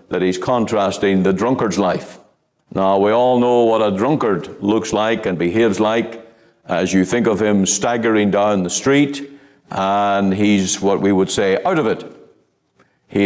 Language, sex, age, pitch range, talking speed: English, male, 60-79, 100-160 Hz, 165 wpm